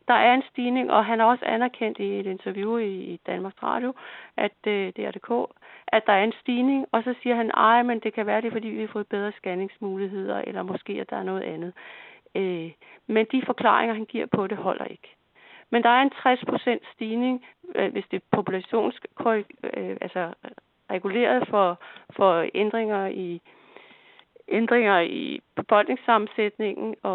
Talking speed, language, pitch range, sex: 170 wpm, Danish, 205-250 Hz, female